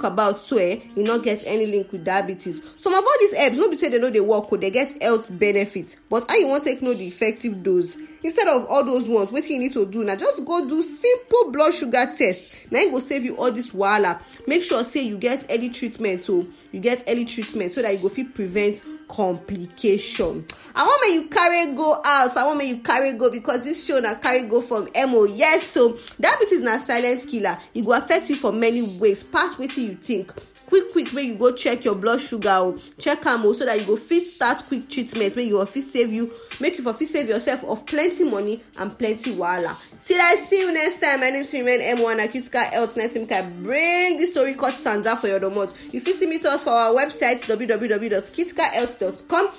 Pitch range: 210-290 Hz